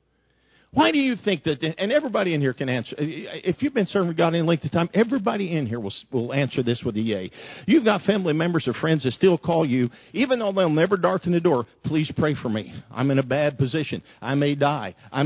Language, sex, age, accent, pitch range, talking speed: English, male, 50-69, American, 145-215 Hz, 235 wpm